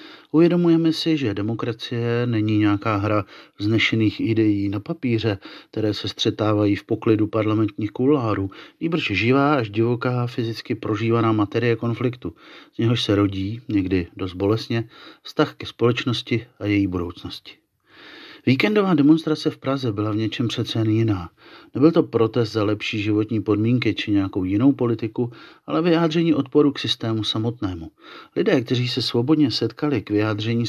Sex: male